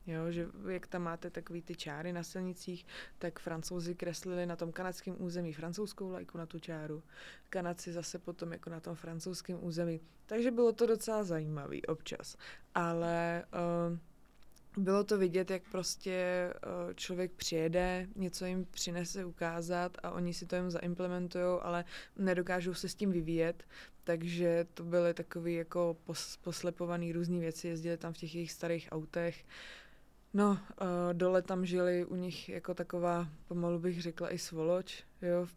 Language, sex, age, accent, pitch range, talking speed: Czech, female, 20-39, native, 165-180 Hz, 155 wpm